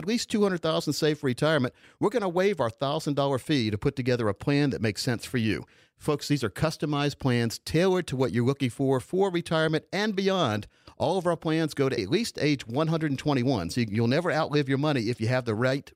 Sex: male